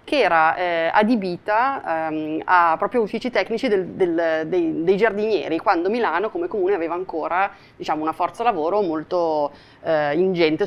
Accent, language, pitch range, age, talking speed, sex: native, Italian, 165-205 Hz, 30-49, 150 wpm, female